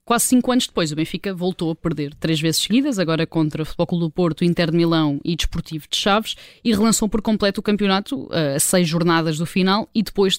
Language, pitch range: Portuguese, 165-195 Hz